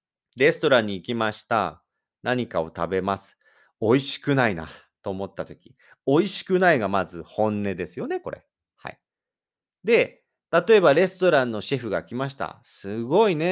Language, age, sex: Japanese, 40-59, male